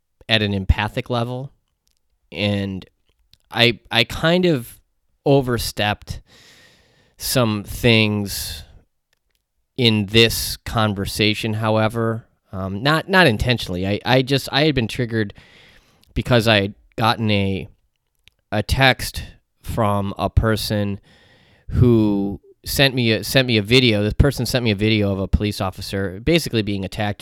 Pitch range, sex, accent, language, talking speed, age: 95-110 Hz, male, American, English, 130 wpm, 30-49